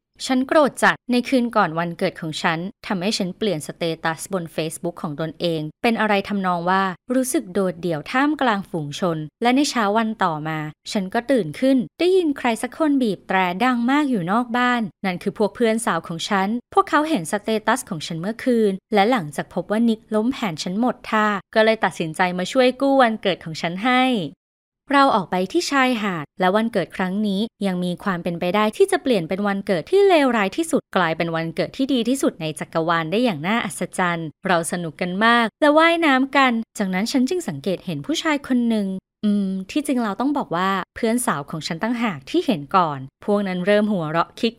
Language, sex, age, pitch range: Thai, female, 20-39, 180-245 Hz